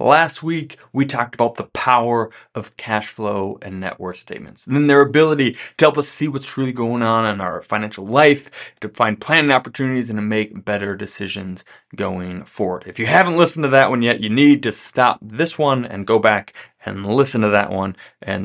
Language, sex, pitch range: English, male, 105-135 Hz